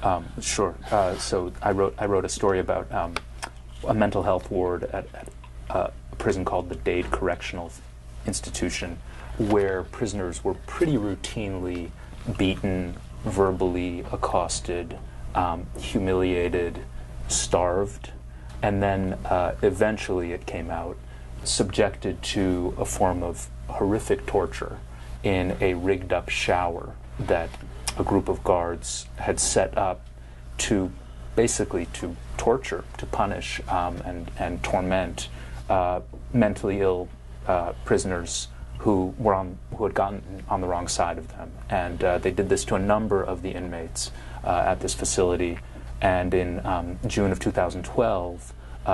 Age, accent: 30-49, American